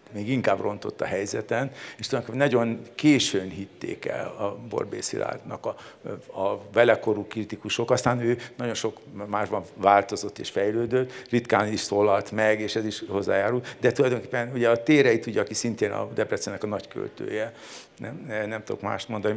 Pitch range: 110-130 Hz